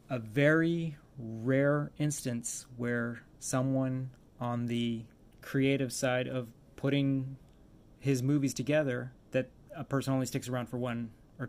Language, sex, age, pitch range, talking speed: English, male, 30-49, 115-135 Hz, 125 wpm